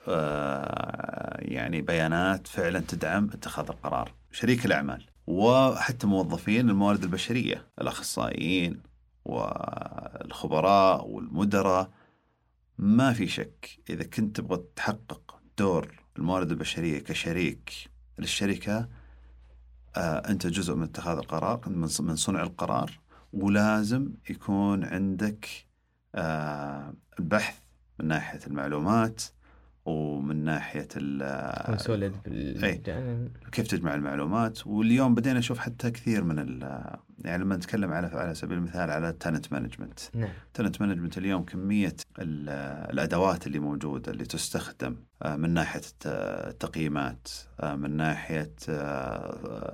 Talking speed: 100 wpm